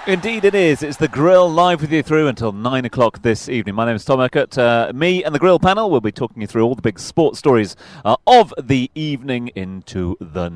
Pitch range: 115-155 Hz